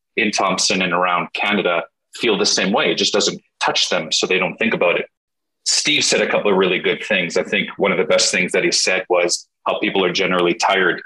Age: 30-49